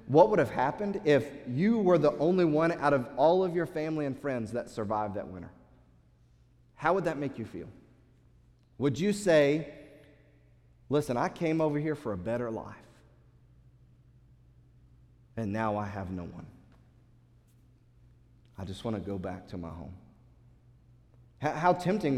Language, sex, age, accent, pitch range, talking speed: English, male, 30-49, American, 120-160 Hz, 155 wpm